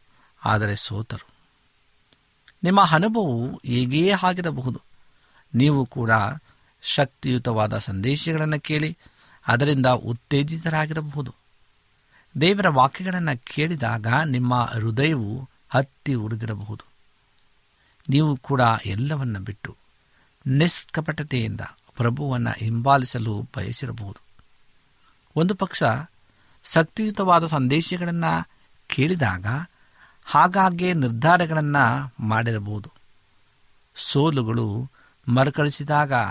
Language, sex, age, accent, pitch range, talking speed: Kannada, male, 60-79, native, 110-155 Hz, 65 wpm